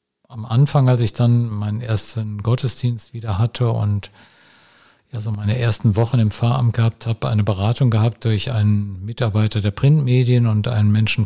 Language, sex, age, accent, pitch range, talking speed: German, male, 50-69, German, 105-120 Hz, 150 wpm